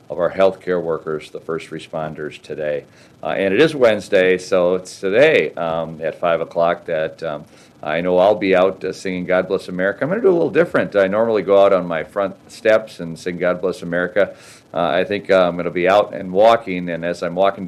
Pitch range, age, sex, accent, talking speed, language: 85-95 Hz, 50-69, male, American, 225 wpm, English